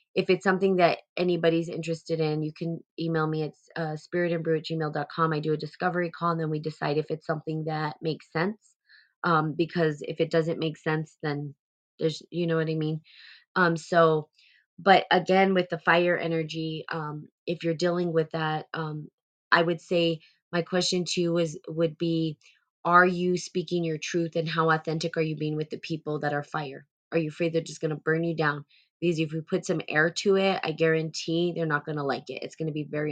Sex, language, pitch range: female, English, 155-170 Hz